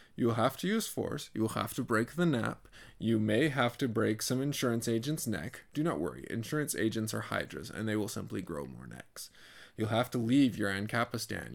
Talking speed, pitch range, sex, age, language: 220 wpm, 105-130 Hz, male, 20-39, English